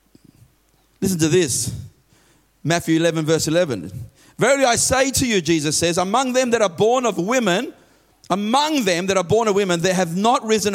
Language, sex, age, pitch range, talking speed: English, male, 40-59, 160-245 Hz, 180 wpm